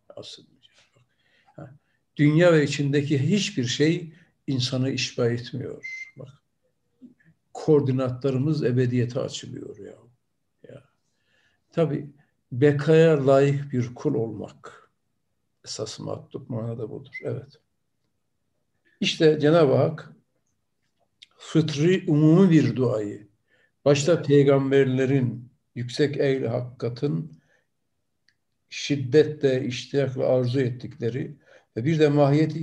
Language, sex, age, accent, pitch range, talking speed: Turkish, male, 60-79, native, 130-155 Hz, 85 wpm